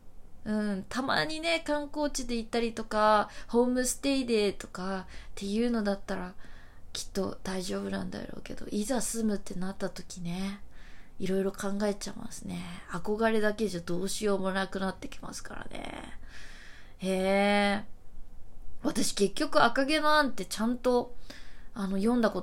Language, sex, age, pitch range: Japanese, female, 20-39, 185-240 Hz